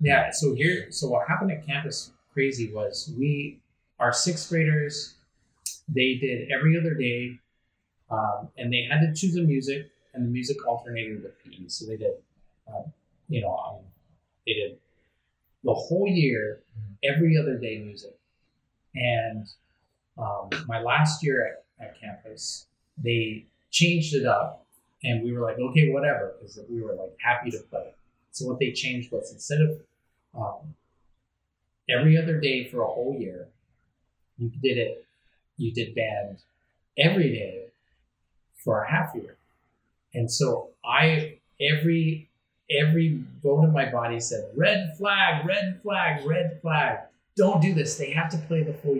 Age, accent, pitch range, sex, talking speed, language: 30-49, American, 115-155 Hz, male, 155 wpm, English